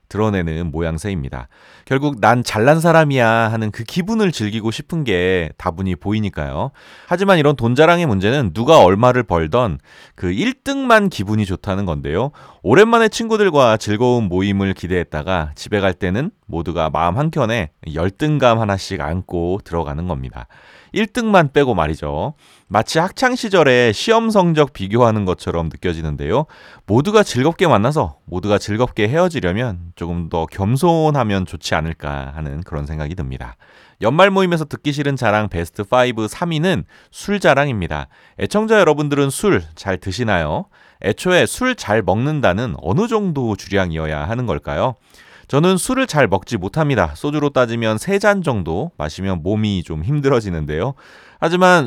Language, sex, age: Korean, male, 30-49